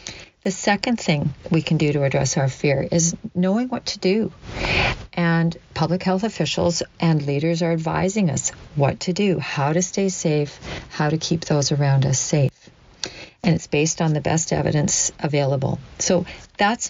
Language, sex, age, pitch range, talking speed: English, female, 50-69, 150-180 Hz, 170 wpm